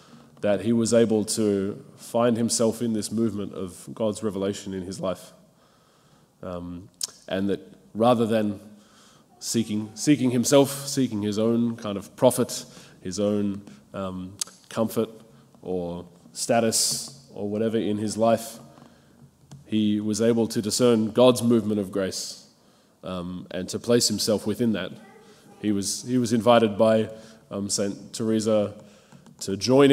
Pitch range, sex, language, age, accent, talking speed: 100-115 Hz, male, English, 20-39, Australian, 140 wpm